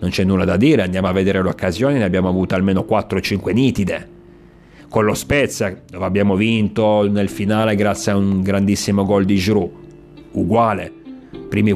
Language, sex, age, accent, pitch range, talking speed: Italian, male, 30-49, native, 95-120 Hz, 165 wpm